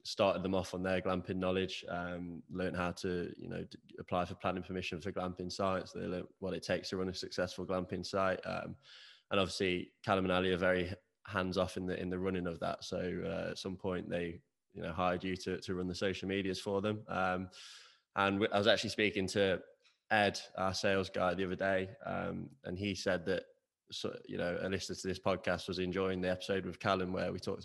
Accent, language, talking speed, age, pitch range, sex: British, English, 225 wpm, 20-39, 90-95 Hz, male